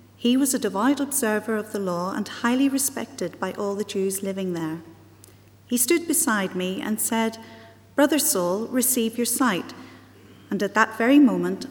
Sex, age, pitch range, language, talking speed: female, 40-59, 185-235 Hz, English, 170 wpm